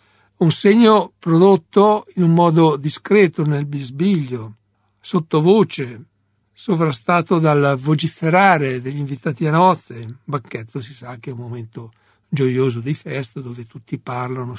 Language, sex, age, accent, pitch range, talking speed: Italian, male, 60-79, native, 120-160 Hz, 130 wpm